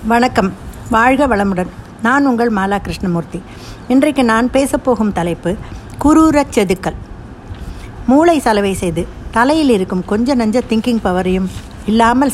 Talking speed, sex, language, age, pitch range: 110 wpm, female, Tamil, 60-79, 185-245 Hz